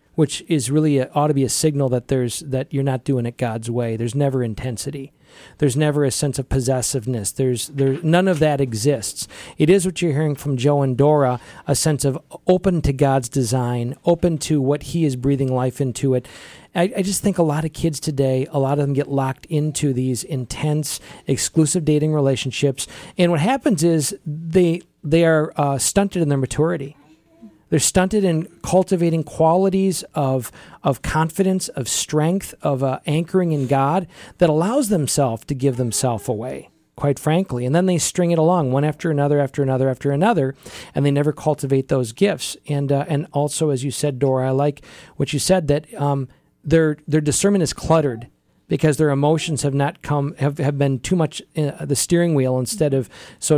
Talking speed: 195 wpm